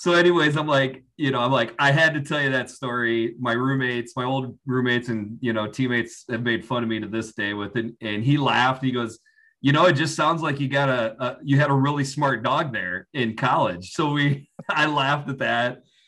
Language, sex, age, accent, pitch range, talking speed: English, male, 30-49, American, 110-140 Hz, 240 wpm